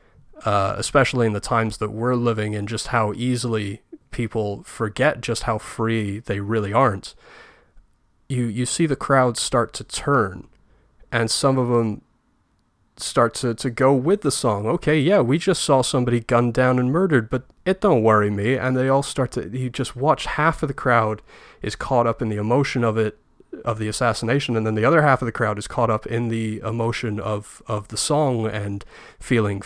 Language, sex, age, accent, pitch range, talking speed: English, male, 30-49, American, 110-130 Hz, 195 wpm